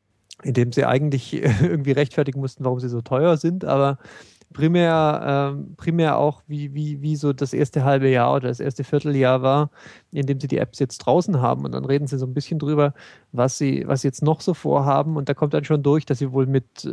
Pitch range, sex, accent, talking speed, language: 130-155 Hz, male, German, 220 wpm, German